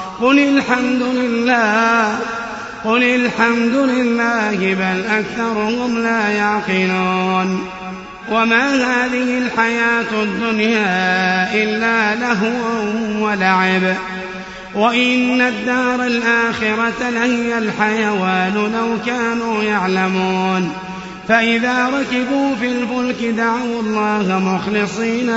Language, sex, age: Arabic, male, 30-49